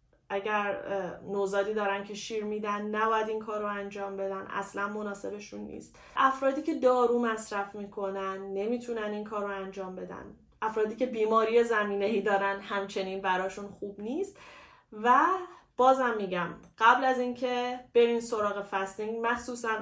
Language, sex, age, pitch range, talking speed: Persian, female, 30-49, 200-250 Hz, 135 wpm